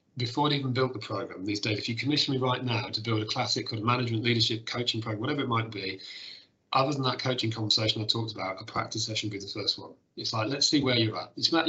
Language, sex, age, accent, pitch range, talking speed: English, male, 40-59, British, 110-125 Hz, 265 wpm